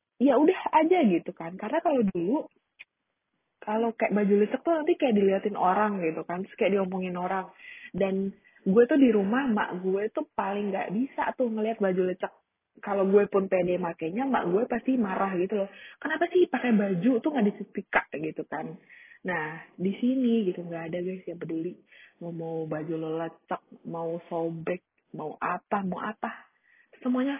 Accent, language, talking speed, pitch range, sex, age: native, Indonesian, 170 wpm, 175-255 Hz, female, 20-39